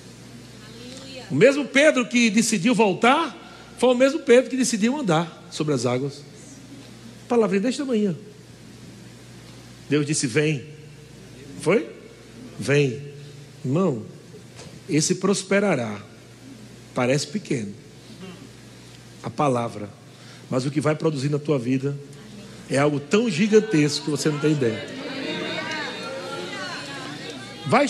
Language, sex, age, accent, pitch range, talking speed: Portuguese, male, 60-79, Brazilian, 145-225 Hz, 105 wpm